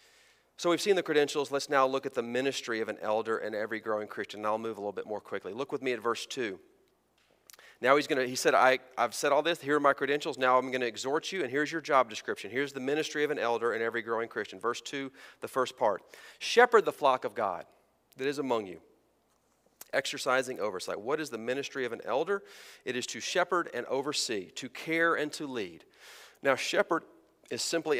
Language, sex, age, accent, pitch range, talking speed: English, male, 40-59, American, 120-160 Hz, 225 wpm